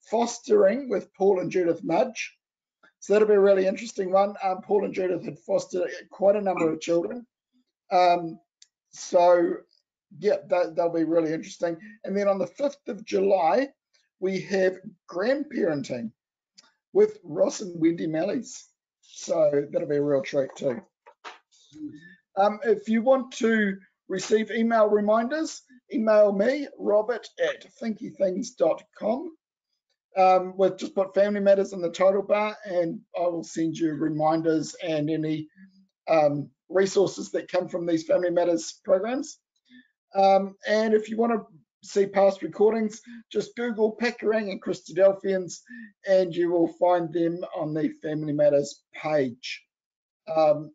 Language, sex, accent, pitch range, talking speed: English, male, Australian, 170-220 Hz, 140 wpm